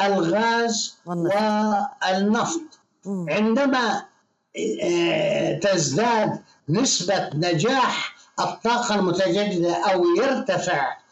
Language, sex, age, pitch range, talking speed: Arabic, male, 60-79, 190-225 Hz, 55 wpm